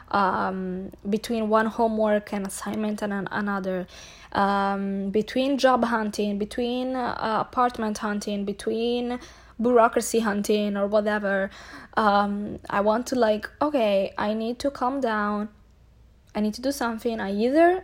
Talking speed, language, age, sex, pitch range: 135 wpm, English, 20-39, female, 205-245 Hz